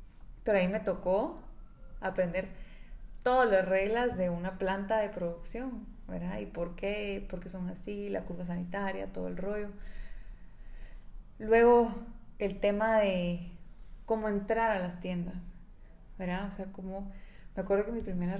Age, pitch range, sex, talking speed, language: 20-39, 185-220 Hz, female, 145 wpm, Spanish